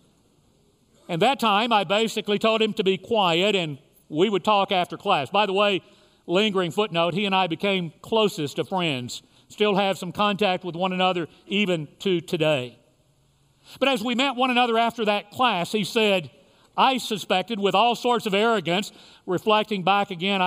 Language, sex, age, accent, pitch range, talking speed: English, male, 50-69, American, 150-205 Hz, 175 wpm